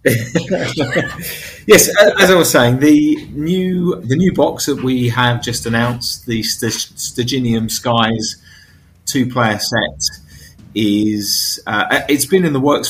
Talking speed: 130 wpm